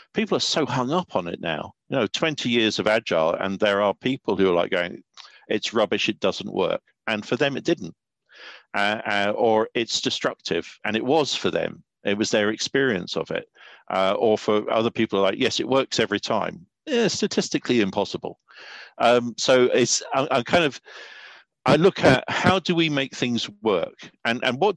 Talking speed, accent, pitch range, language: 195 wpm, British, 100-135 Hz, English